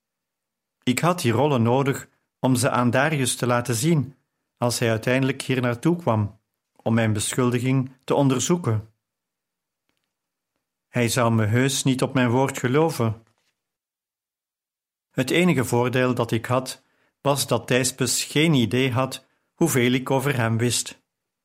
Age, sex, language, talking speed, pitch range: 50-69, male, Dutch, 135 wpm, 115-135 Hz